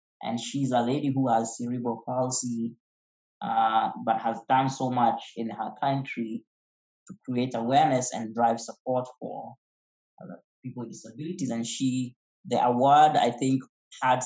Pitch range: 115-135 Hz